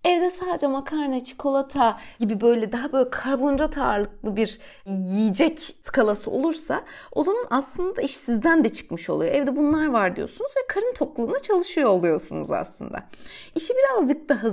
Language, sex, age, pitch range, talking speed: Turkish, female, 30-49, 215-295 Hz, 145 wpm